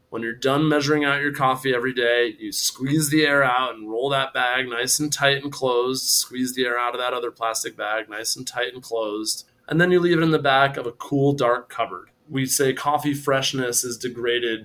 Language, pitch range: English, 120-140 Hz